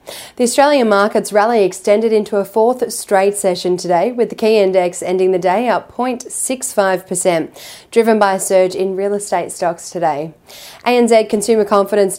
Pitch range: 180-215 Hz